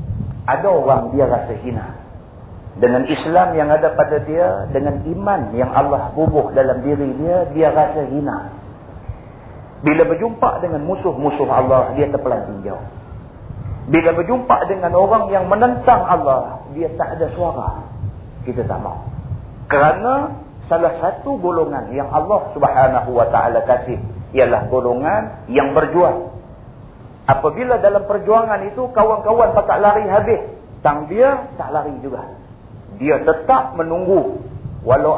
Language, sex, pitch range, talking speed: Malay, male, 115-165 Hz, 130 wpm